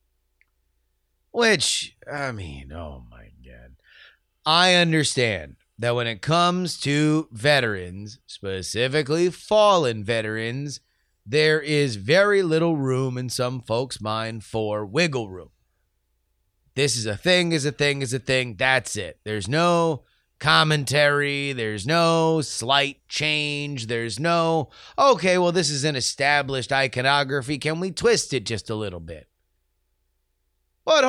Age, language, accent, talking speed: 30-49, English, American, 125 wpm